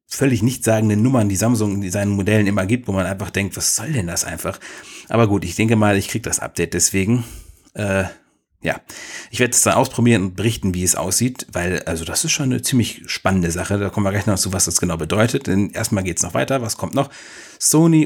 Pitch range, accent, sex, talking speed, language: 95-120 Hz, German, male, 235 wpm, German